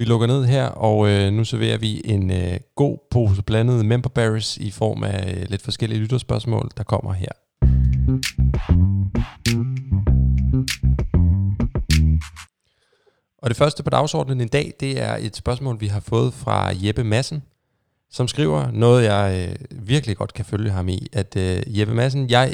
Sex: male